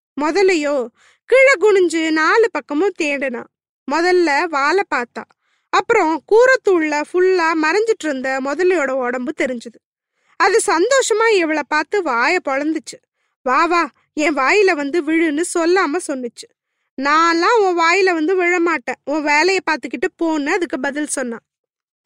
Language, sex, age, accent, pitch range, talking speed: Tamil, female, 20-39, native, 290-380 Hz, 75 wpm